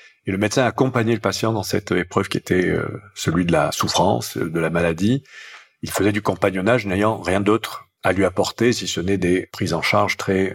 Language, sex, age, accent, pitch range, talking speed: French, male, 50-69, French, 90-115 Hz, 210 wpm